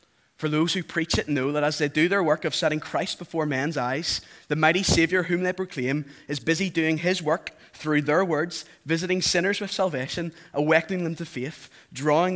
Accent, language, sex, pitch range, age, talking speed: British, English, male, 120-155 Hz, 20-39, 200 wpm